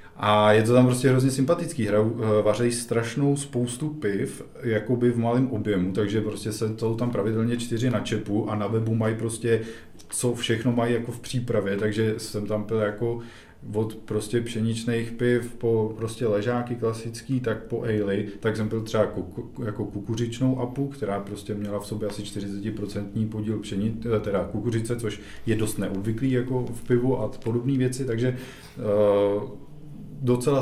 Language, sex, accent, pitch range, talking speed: Czech, male, native, 100-115 Hz, 160 wpm